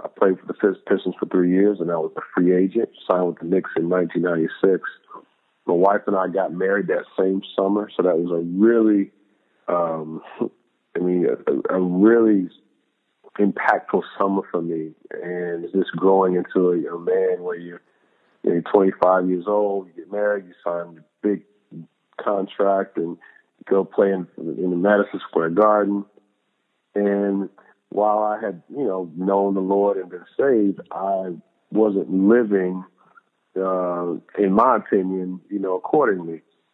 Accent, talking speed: American, 160 wpm